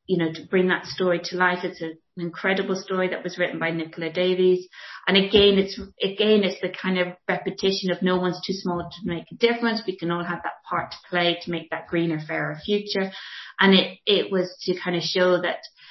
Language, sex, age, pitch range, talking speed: English, female, 30-49, 175-200 Hz, 225 wpm